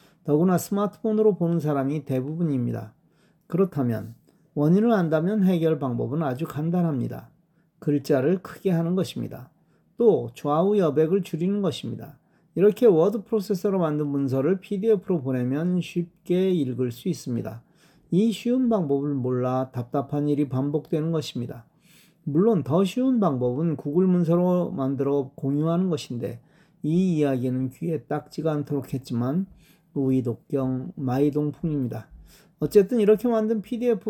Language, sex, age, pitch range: Korean, male, 40-59, 140-185 Hz